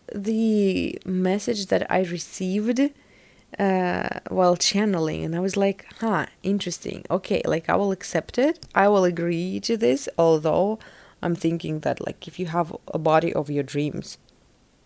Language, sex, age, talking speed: English, female, 20-39, 155 wpm